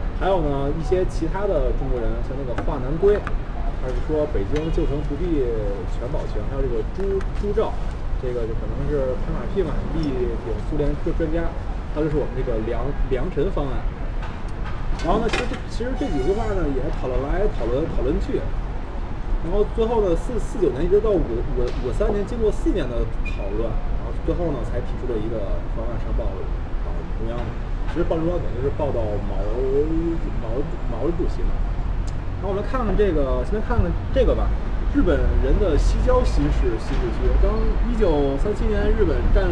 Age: 20-39